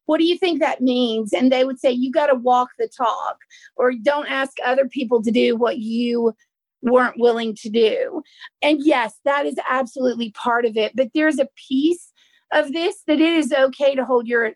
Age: 40-59